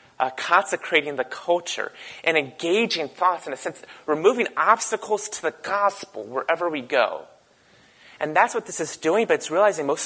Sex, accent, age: male, American, 30-49